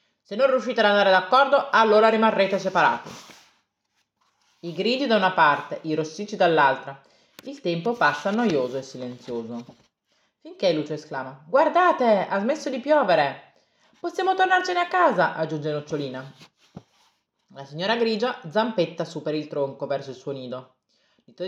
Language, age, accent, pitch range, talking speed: Italian, 30-49, native, 140-220 Hz, 140 wpm